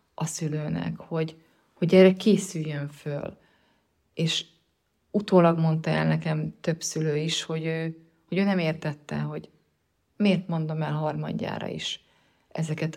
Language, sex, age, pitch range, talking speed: Hungarian, female, 30-49, 150-180 Hz, 130 wpm